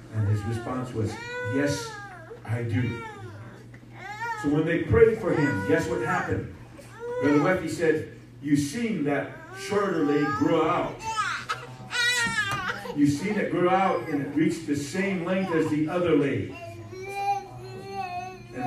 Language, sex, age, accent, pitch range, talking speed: English, male, 50-69, American, 140-220 Hz, 135 wpm